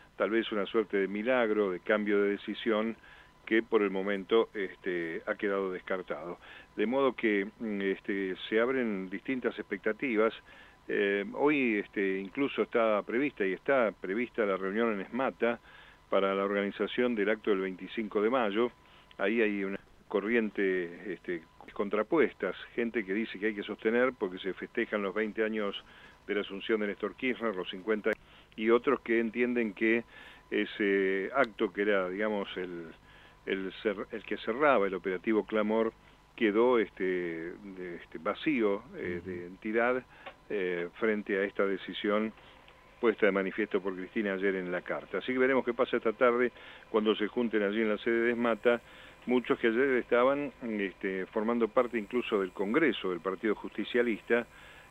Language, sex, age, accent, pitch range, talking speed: Spanish, male, 40-59, Argentinian, 95-115 Hz, 150 wpm